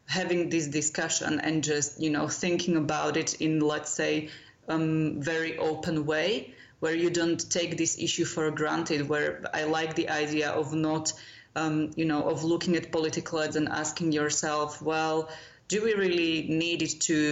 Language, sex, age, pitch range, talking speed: English, female, 20-39, 155-170 Hz, 175 wpm